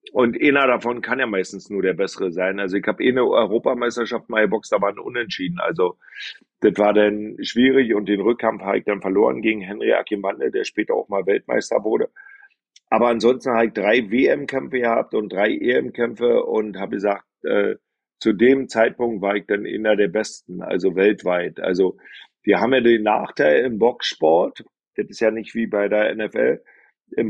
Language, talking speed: German, 180 wpm